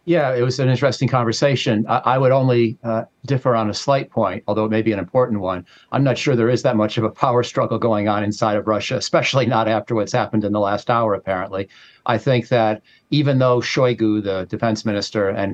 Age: 50-69